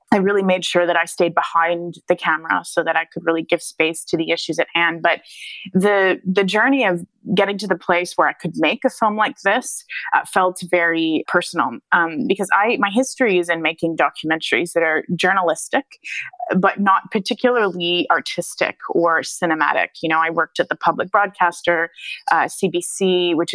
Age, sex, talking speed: 20-39, female, 185 wpm